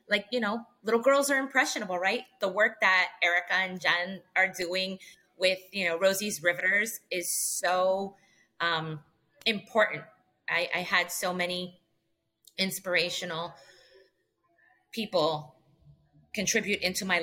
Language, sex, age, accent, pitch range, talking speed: English, female, 20-39, American, 160-195 Hz, 120 wpm